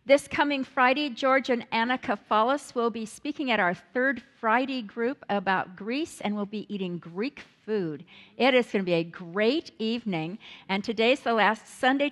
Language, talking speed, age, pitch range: English, 180 wpm, 50-69, 200-255 Hz